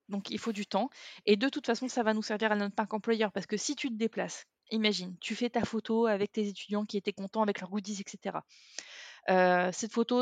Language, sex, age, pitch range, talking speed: French, female, 20-39, 185-220 Hz, 240 wpm